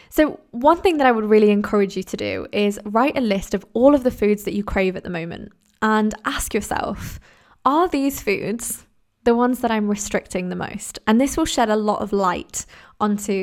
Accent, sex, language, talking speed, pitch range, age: British, female, English, 215 wpm, 200-245 Hz, 20-39